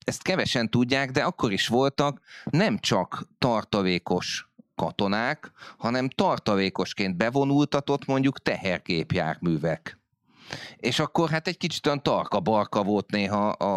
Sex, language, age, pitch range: male, Hungarian, 30-49, 90-125 Hz